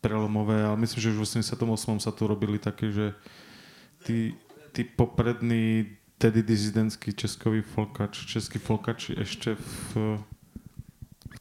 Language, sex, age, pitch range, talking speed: Slovak, male, 20-39, 105-120 Hz, 125 wpm